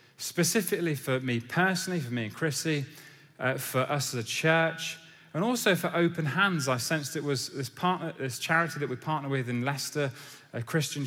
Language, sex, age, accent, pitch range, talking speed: English, male, 30-49, British, 120-155 Hz, 190 wpm